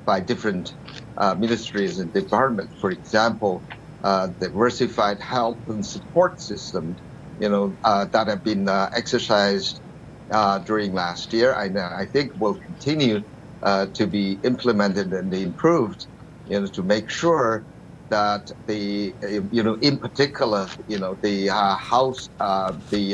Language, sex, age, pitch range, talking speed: English, male, 50-69, 105-125 Hz, 145 wpm